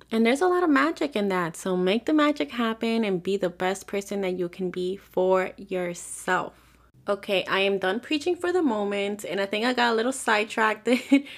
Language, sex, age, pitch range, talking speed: English, female, 20-39, 185-225 Hz, 210 wpm